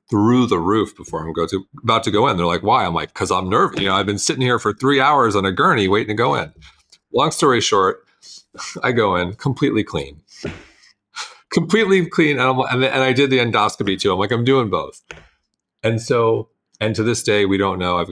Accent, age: American, 40-59